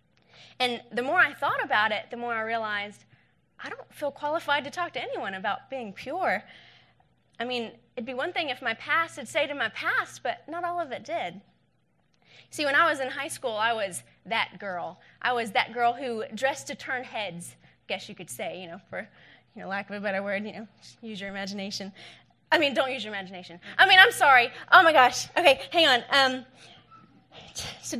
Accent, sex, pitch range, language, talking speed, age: American, female, 215-310 Hz, English, 210 wpm, 20-39